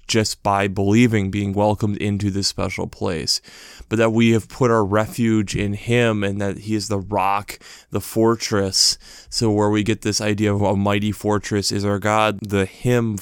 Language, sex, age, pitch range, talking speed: English, male, 20-39, 100-115 Hz, 185 wpm